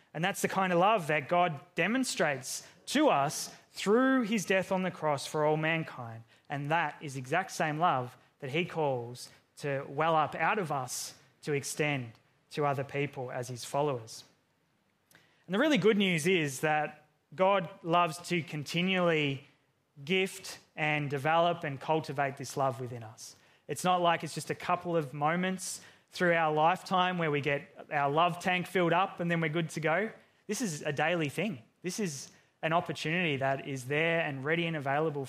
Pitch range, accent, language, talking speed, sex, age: 140-170 Hz, Australian, English, 180 wpm, male, 20-39